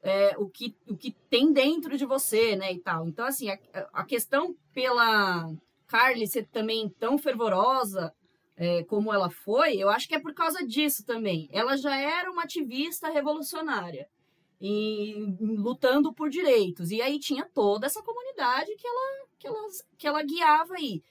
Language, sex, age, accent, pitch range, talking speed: Portuguese, female, 20-39, Brazilian, 200-280 Hz, 170 wpm